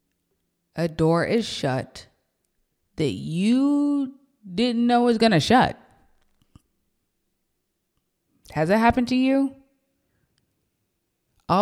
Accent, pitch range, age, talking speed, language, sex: American, 160-225 Hz, 20-39, 90 wpm, English, female